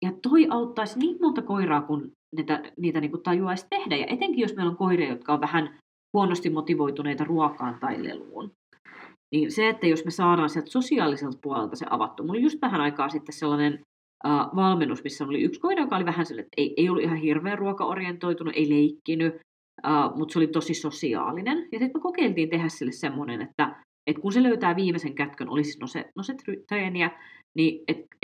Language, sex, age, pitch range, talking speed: Finnish, female, 30-49, 155-235 Hz, 195 wpm